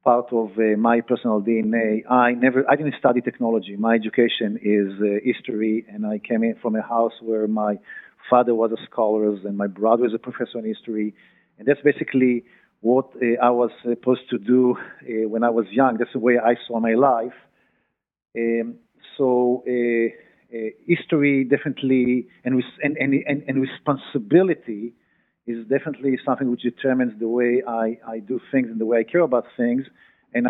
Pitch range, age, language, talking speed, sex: 115-130 Hz, 50-69, English, 180 wpm, male